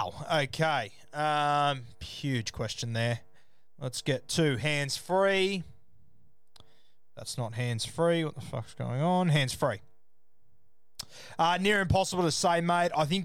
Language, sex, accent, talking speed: English, male, Australian, 130 wpm